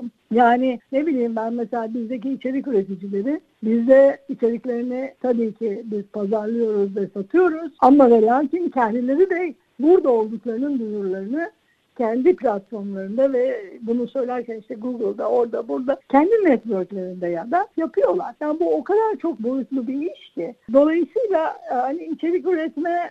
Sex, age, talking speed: female, 60-79, 130 wpm